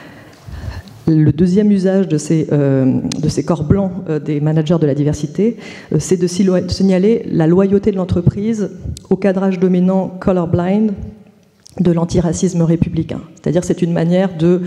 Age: 40-59